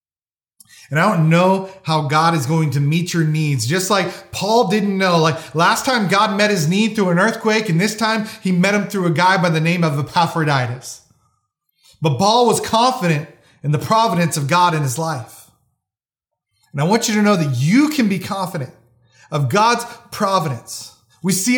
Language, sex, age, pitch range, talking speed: English, male, 30-49, 125-195 Hz, 190 wpm